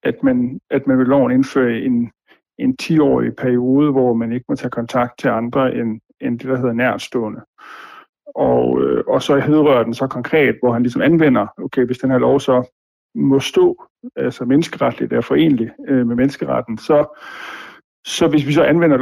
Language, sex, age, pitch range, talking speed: Danish, male, 50-69, 130-165 Hz, 185 wpm